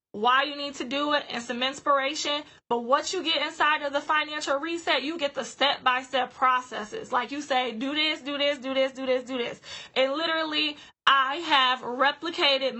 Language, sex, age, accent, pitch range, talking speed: English, female, 20-39, American, 255-290 Hz, 190 wpm